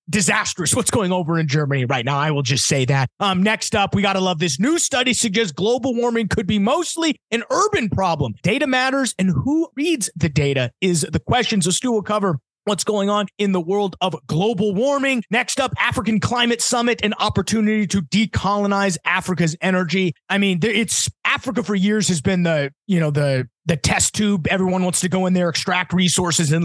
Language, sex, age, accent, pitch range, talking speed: English, male, 30-49, American, 160-205 Hz, 205 wpm